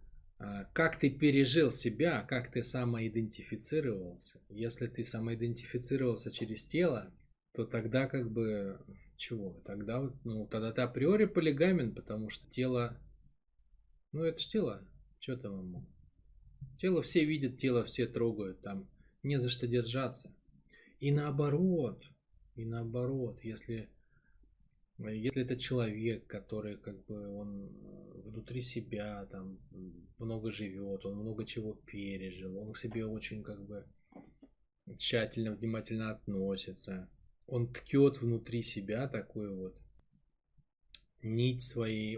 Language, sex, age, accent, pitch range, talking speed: Russian, male, 20-39, native, 100-130 Hz, 115 wpm